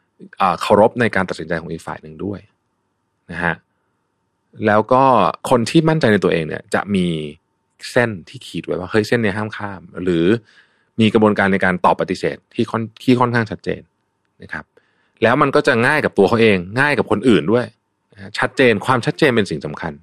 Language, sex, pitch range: Thai, male, 90-125 Hz